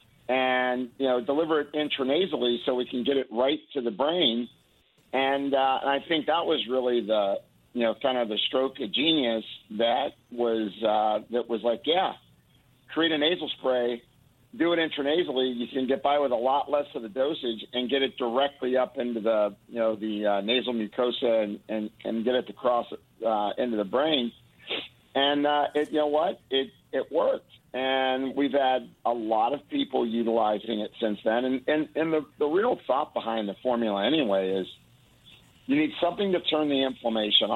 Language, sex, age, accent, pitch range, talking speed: English, male, 50-69, American, 115-145 Hz, 190 wpm